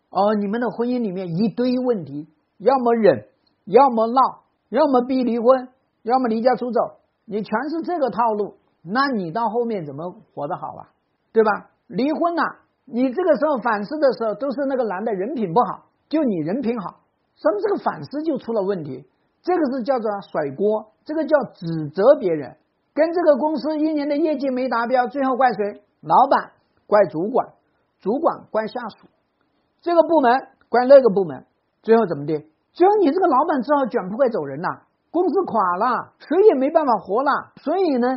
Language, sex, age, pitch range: Chinese, male, 50-69, 210-280 Hz